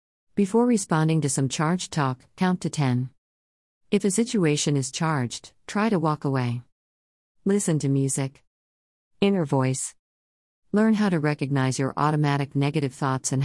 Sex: female